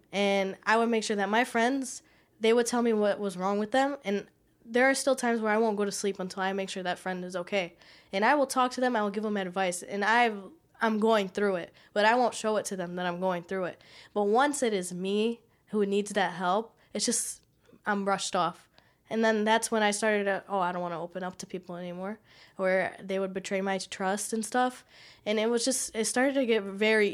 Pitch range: 195-235 Hz